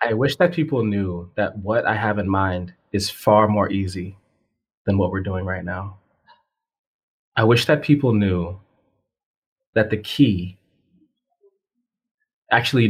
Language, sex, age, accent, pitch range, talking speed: English, male, 20-39, American, 100-145 Hz, 140 wpm